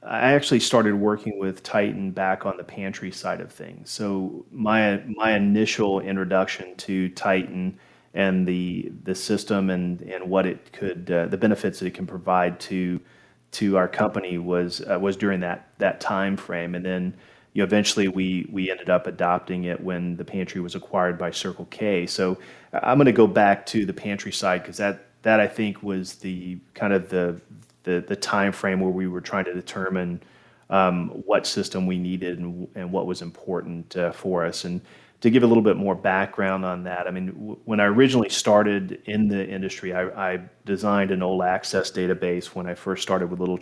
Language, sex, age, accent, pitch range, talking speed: English, male, 30-49, American, 90-100 Hz, 195 wpm